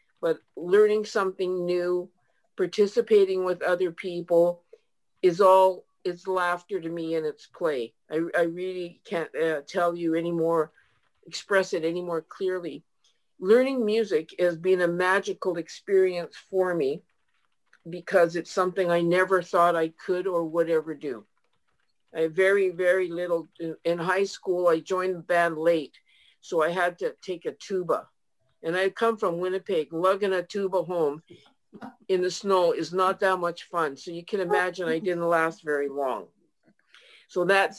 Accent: American